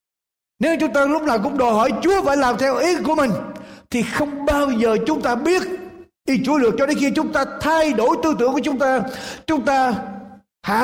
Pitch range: 180-275 Hz